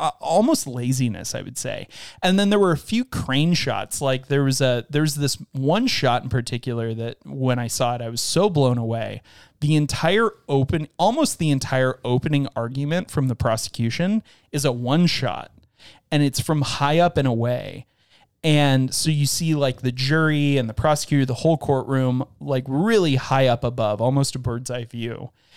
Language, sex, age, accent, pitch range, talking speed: English, male, 30-49, American, 125-150 Hz, 185 wpm